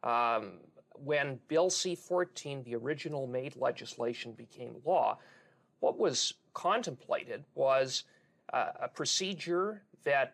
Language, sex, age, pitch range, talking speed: English, male, 40-59, 125-160 Hz, 105 wpm